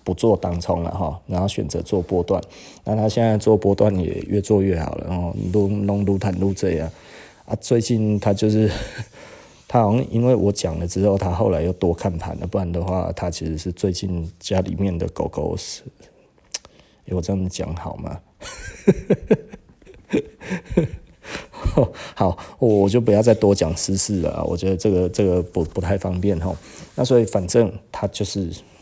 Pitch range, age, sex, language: 85-100 Hz, 20-39, male, Chinese